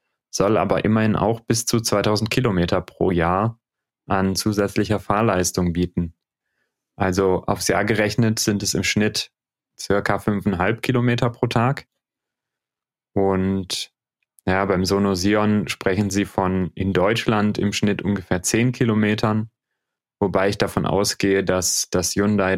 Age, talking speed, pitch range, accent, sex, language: 30-49, 130 wpm, 95-110 Hz, German, male, German